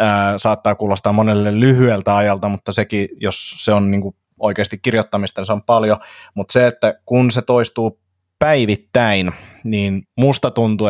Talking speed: 150 wpm